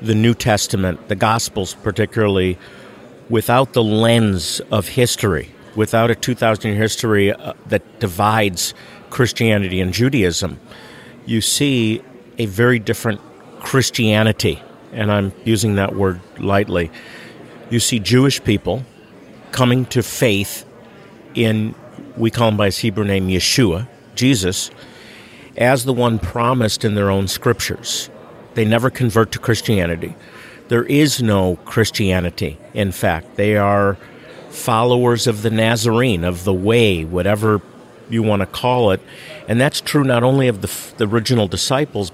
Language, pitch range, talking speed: English, 100-120 Hz, 135 wpm